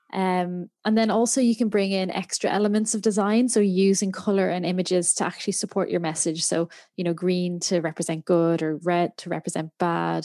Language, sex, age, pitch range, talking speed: English, female, 20-39, 175-210 Hz, 205 wpm